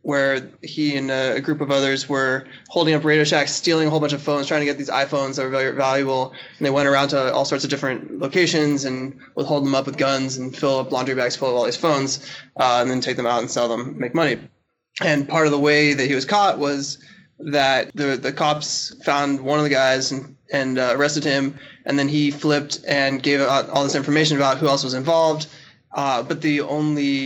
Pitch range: 135-150 Hz